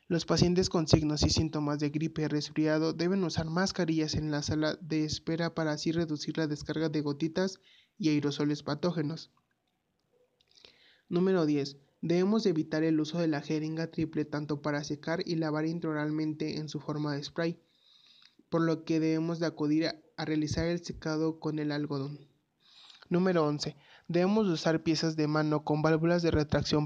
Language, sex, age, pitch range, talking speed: Spanish, male, 20-39, 150-170 Hz, 165 wpm